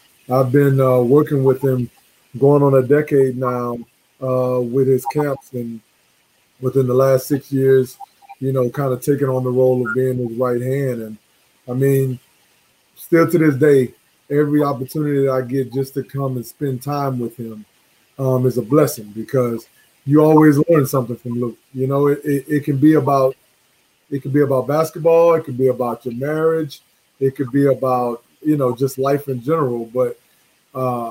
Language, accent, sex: English, American, male